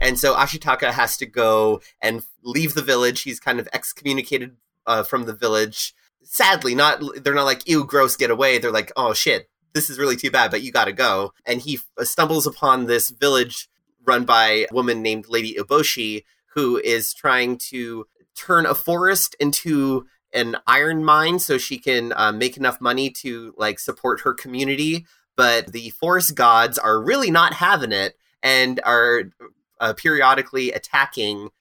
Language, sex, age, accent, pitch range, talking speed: English, male, 30-49, American, 115-155 Hz, 175 wpm